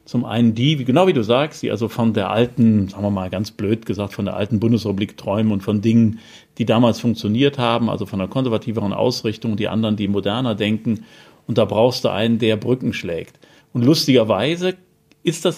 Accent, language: German, German